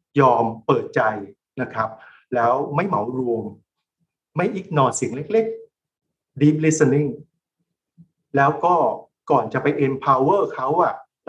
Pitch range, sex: 125-160 Hz, male